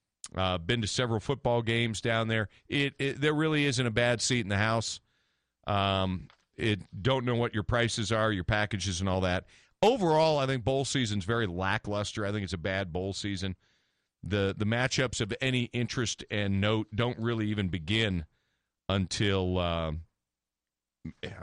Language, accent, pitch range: English, American, 90-125 Hz